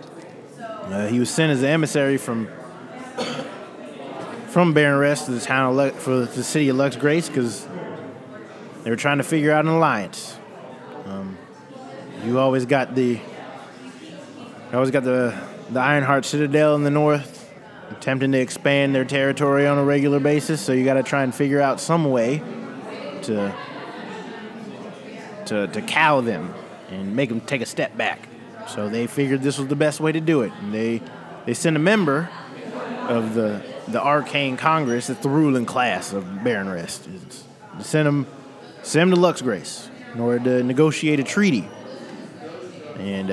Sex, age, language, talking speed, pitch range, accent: male, 20-39, English, 160 wpm, 125-150 Hz, American